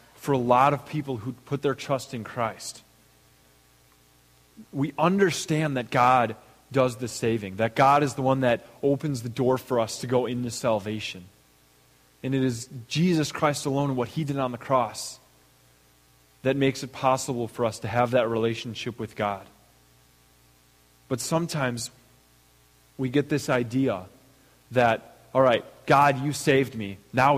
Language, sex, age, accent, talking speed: English, male, 20-39, American, 160 wpm